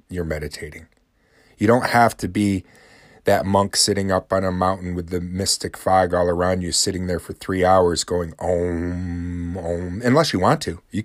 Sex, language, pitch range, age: male, English, 85-110 Hz, 30-49